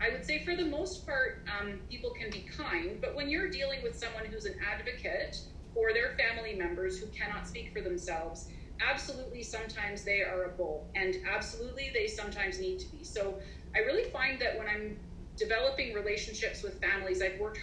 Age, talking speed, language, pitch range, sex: 30-49, 190 wpm, English, 185-235 Hz, female